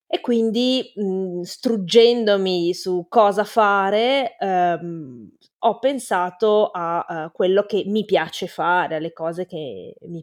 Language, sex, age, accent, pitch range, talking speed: Italian, female, 20-39, native, 165-200 Hz, 125 wpm